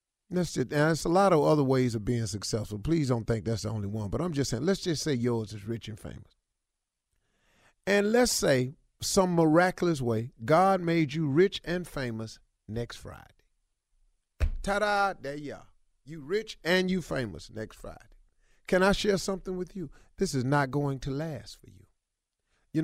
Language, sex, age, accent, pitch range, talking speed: English, male, 40-59, American, 135-195 Hz, 180 wpm